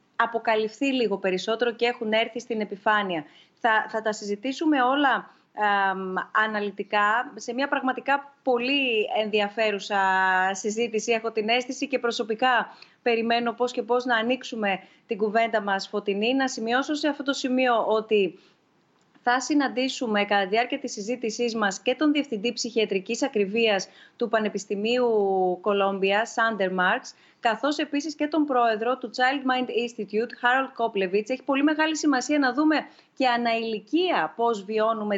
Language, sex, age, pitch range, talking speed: Greek, female, 30-49, 210-260 Hz, 140 wpm